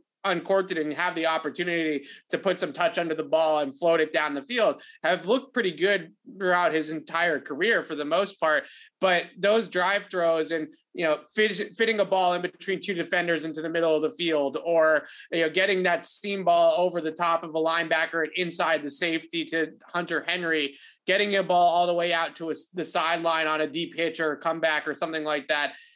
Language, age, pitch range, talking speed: English, 20-39, 160-185 Hz, 215 wpm